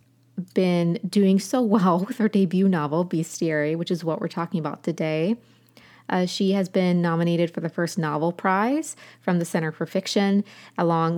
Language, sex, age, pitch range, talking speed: English, female, 20-39, 160-195 Hz, 170 wpm